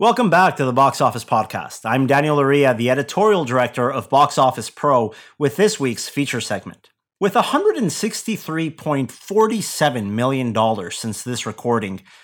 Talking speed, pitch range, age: 135 wpm, 130-175 Hz, 30-49